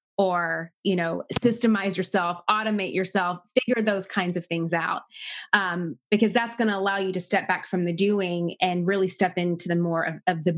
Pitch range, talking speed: 180-215 Hz, 200 wpm